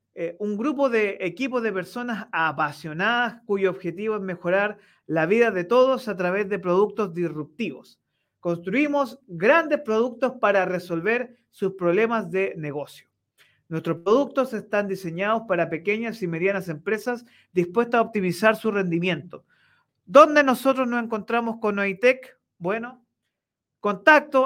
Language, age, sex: Spanish, 40-59, male